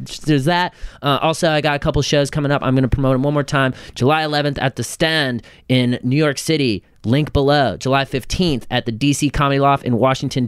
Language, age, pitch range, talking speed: English, 30-49, 115-140 Hz, 220 wpm